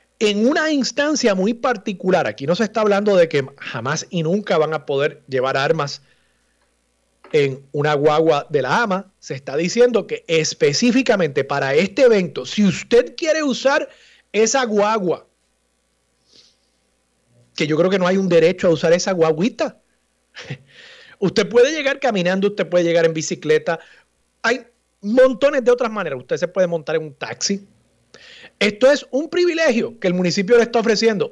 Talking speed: 160 wpm